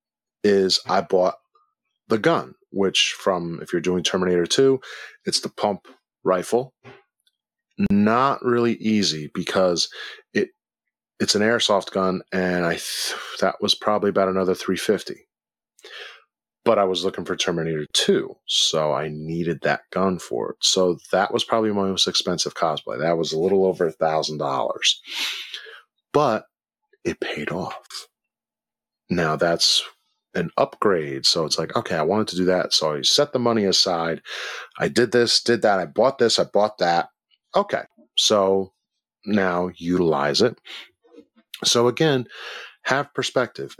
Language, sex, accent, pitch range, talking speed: English, male, American, 90-120 Hz, 145 wpm